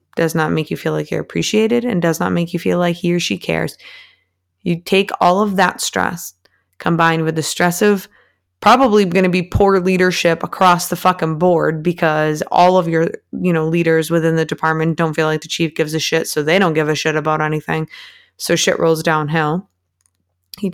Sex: female